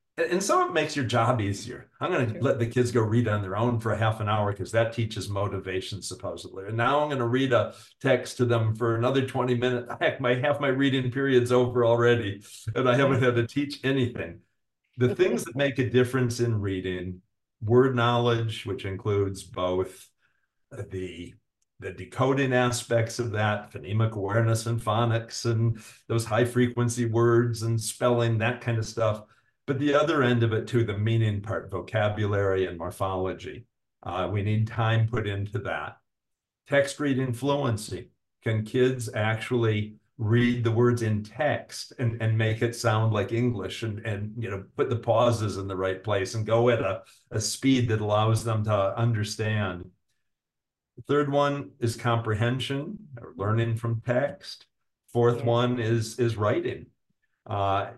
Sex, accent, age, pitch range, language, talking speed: male, American, 50-69, 105-125 Hz, English, 170 wpm